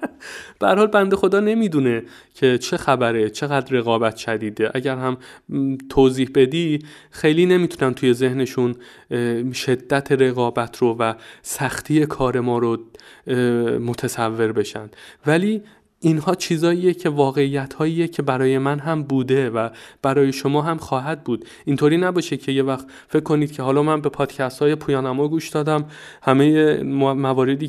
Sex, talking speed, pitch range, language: male, 135 wpm, 130-155 Hz, Persian